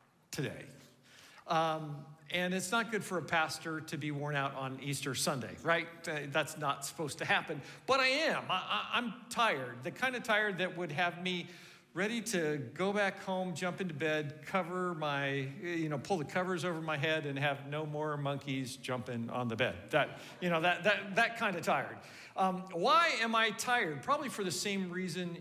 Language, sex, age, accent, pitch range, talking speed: English, male, 50-69, American, 145-195 Hz, 200 wpm